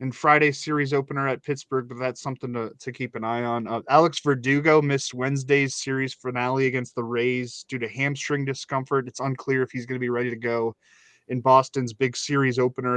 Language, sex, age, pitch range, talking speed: English, male, 20-39, 120-140 Hz, 205 wpm